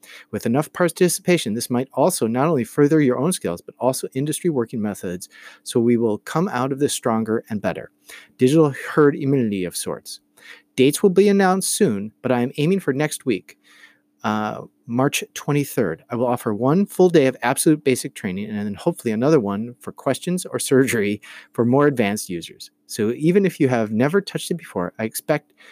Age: 40-59